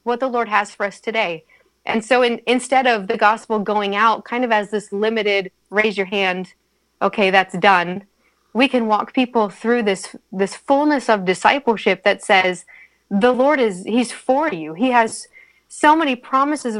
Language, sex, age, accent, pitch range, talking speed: English, female, 30-49, American, 195-245 Hz, 180 wpm